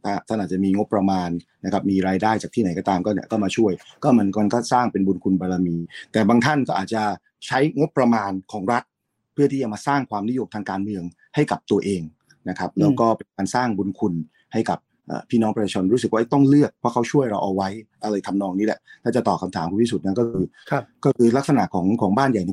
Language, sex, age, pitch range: Thai, male, 30-49, 100-120 Hz